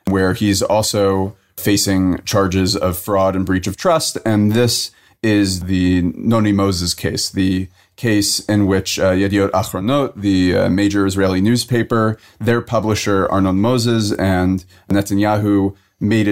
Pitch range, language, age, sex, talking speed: 95-105 Hz, English, 30-49, male, 135 wpm